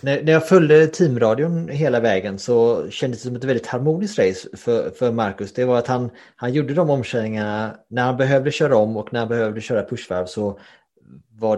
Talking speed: 195 wpm